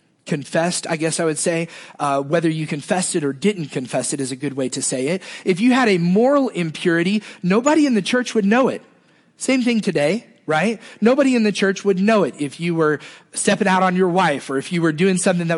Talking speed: 235 wpm